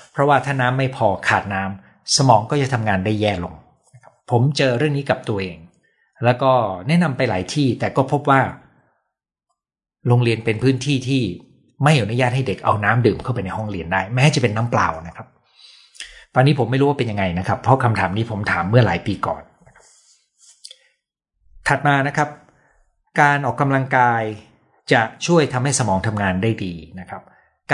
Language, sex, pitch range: Thai, male, 100-135 Hz